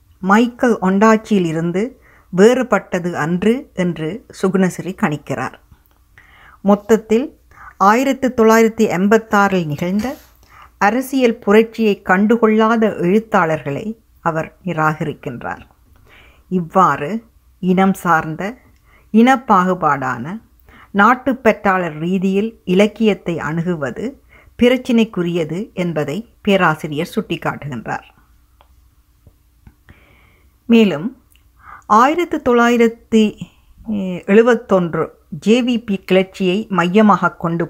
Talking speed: 60 wpm